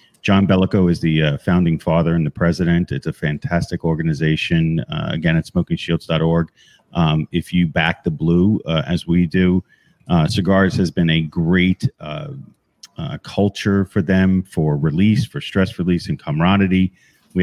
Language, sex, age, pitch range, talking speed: English, male, 40-59, 80-100 Hz, 160 wpm